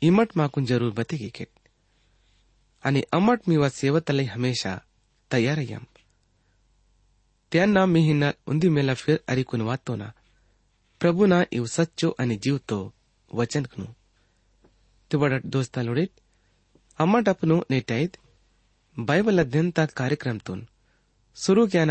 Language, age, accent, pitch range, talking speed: English, 30-49, Indian, 105-155 Hz, 70 wpm